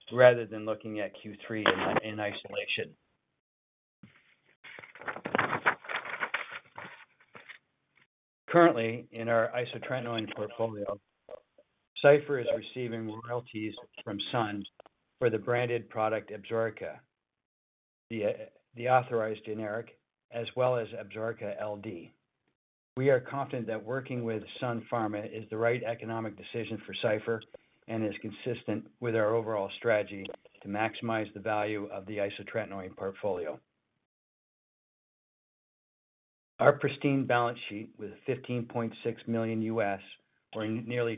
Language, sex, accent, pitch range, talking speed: English, male, American, 105-120 Hz, 105 wpm